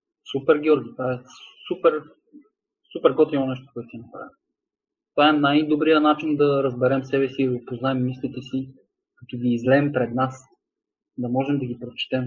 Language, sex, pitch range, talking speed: Bulgarian, male, 130-150 Hz, 160 wpm